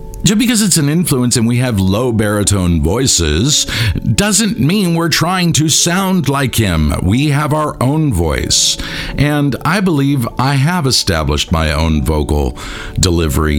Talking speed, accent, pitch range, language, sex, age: 150 wpm, American, 80-130 Hz, English, male, 50-69